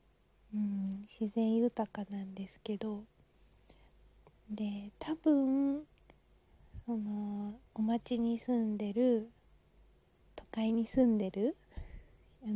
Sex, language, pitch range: female, Japanese, 210-245 Hz